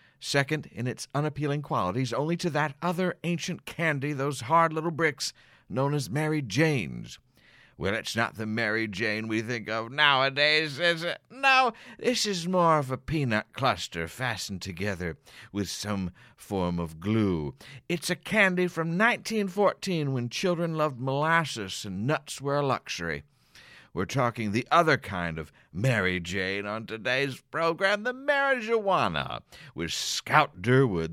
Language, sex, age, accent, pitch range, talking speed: English, male, 50-69, American, 105-155 Hz, 145 wpm